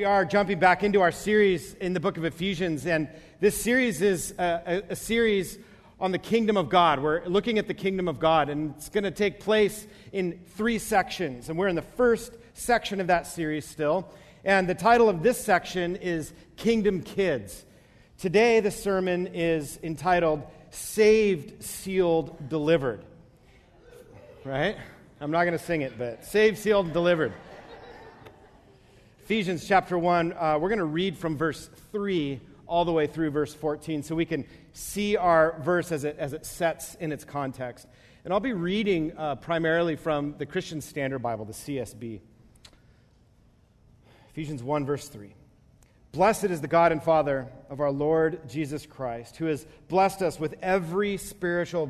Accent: American